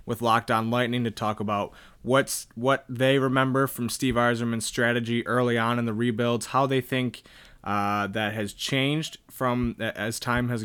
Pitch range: 115-135 Hz